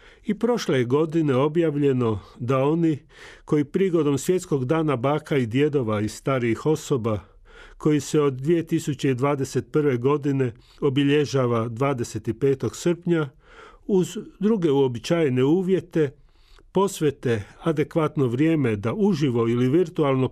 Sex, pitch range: male, 125-165 Hz